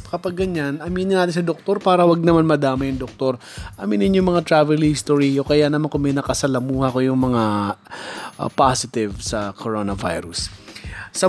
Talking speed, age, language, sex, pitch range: 165 wpm, 20-39, Filipino, male, 135-165 Hz